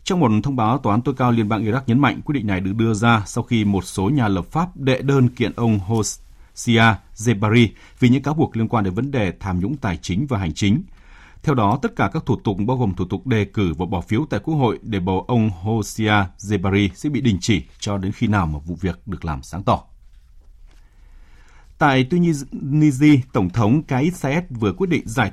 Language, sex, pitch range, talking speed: Vietnamese, male, 95-135 Hz, 225 wpm